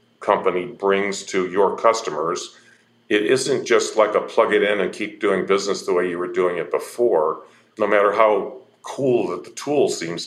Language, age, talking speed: English, 40-59, 185 wpm